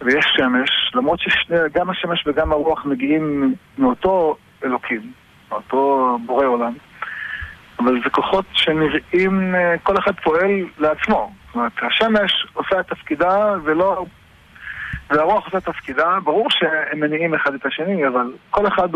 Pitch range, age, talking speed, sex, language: 140-185 Hz, 50-69, 130 wpm, male, Hebrew